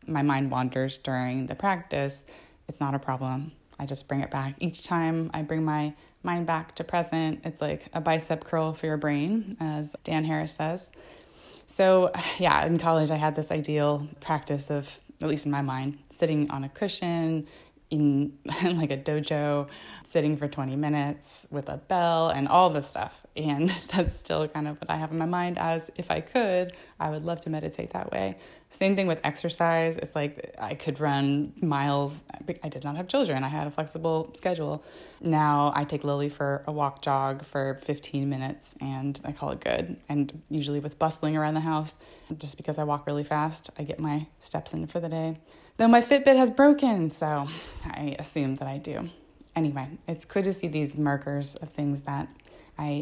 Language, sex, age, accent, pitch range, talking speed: English, female, 20-39, American, 145-165 Hz, 195 wpm